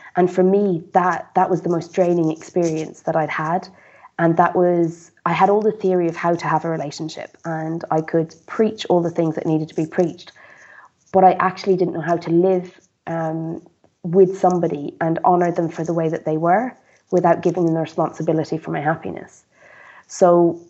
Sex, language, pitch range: female, English, 160-180 Hz